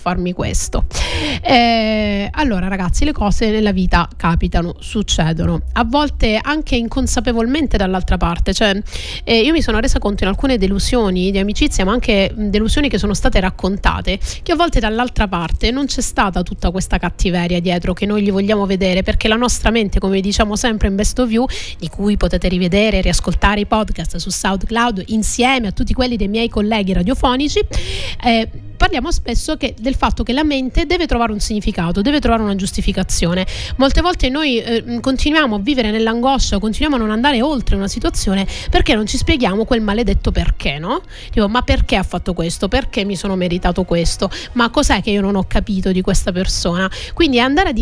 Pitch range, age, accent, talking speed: 195-255 Hz, 30-49, native, 185 wpm